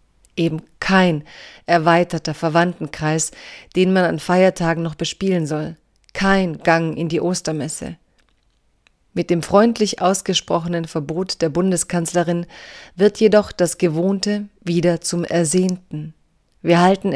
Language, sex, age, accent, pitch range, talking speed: German, female, 40-59, German, 165-190 Hz, 110 wpm